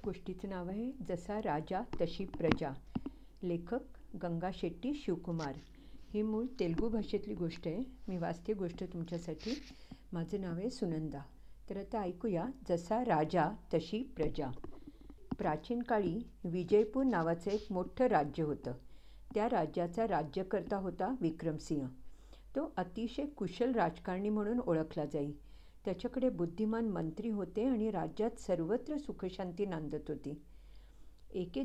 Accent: Indian